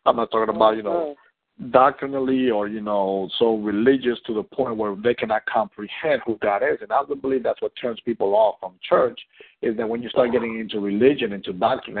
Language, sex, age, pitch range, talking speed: English, male, 50-69, 110-155 Hz, 215 wpm